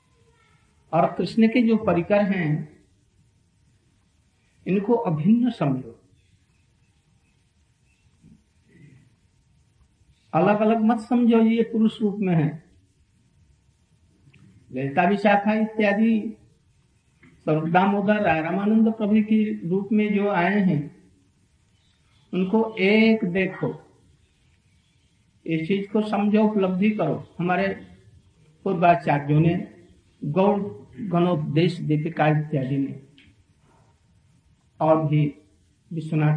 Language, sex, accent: Hindi, male, native